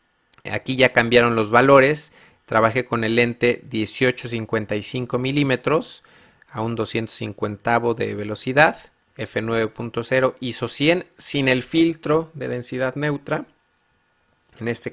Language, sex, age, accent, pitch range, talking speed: Spanish, male, 30-49, Mexican, 115-140 Hz, 110 wpm